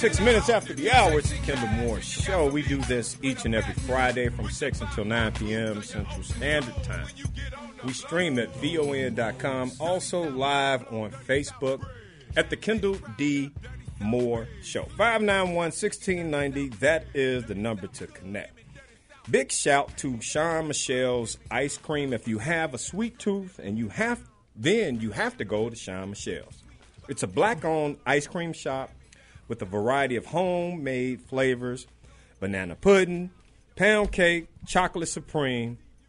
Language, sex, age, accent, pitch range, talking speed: English, male, 40-59, American, 120-165 Hz, 145 wpm